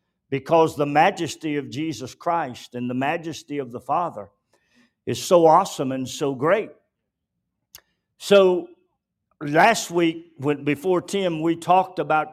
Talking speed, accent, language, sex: 125 wpm, American, English, male